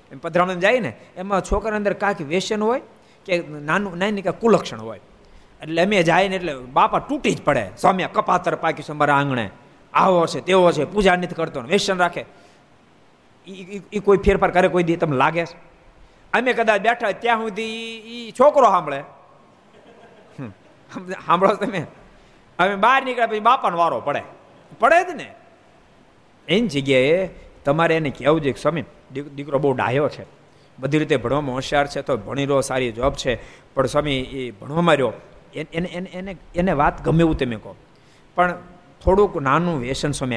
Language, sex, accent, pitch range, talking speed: Gujarati, male, native, 140-200 Hz, 155 wpm